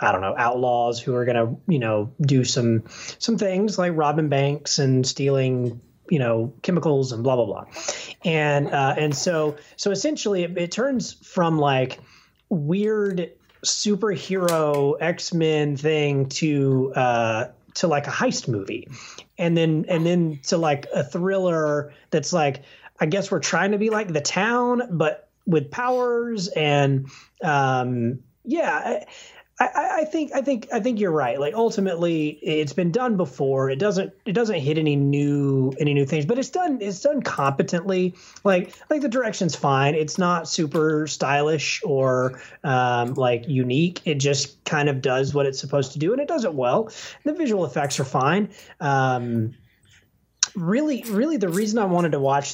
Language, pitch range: English, 135-185 Hz